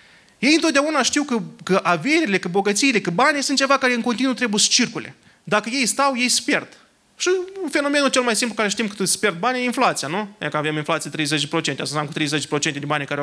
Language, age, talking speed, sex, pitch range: Romanian, 30-49, 225 wpm, male, 170-265 Hz